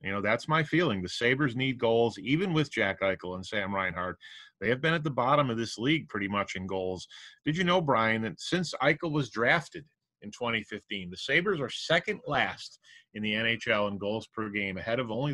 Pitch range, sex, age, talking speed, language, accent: 105-150 Hz, male, 30-49, 215 wpm, English, American